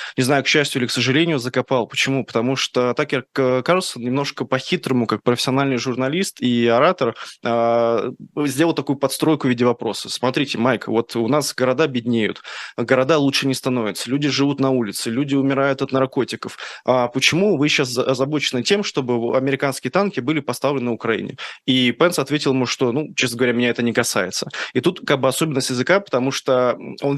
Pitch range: 120-140 Hz